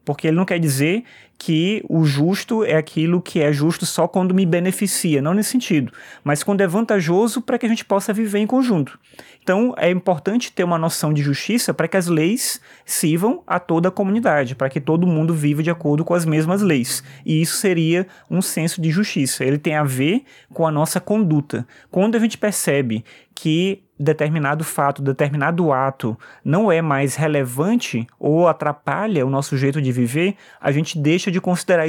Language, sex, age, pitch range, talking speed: Portuguese, male, 20-39, 150-195 Hz, 190 wpm